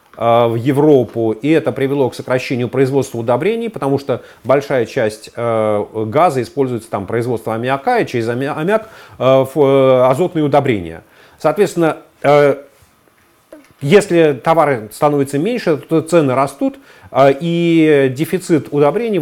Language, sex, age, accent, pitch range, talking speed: Russian, male, 40-59, native, 125-165 Hz, 125 wpm